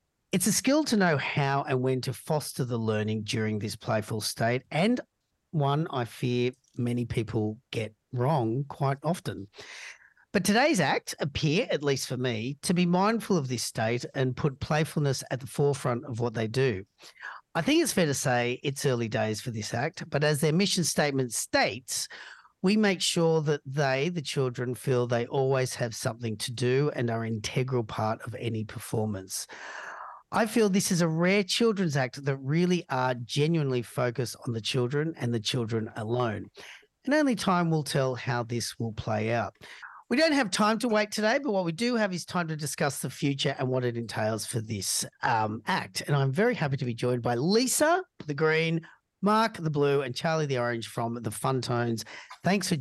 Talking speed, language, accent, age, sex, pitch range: 190 wpm, English, Australian, 40-59, male, 120-165 Hz